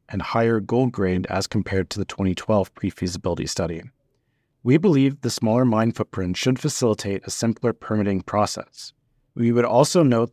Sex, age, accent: male, 30-49, American